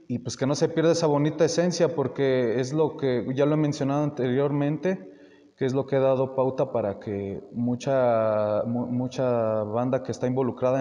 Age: 30-49